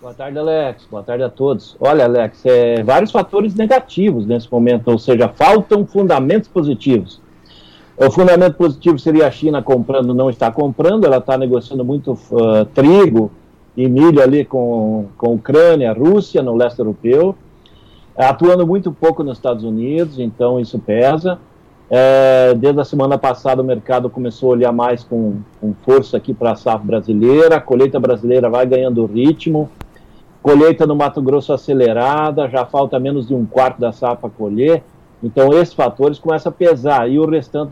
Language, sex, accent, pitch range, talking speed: Portuguese, male, Brazilian, 120-155 Hz, 165 wpm